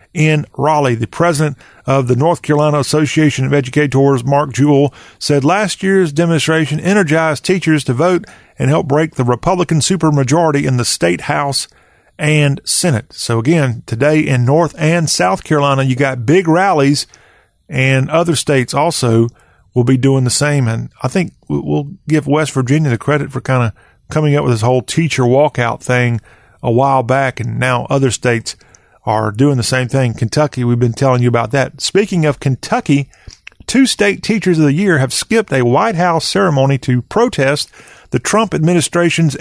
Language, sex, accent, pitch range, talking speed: English, male, American, 130-165 Hz, 170 wpm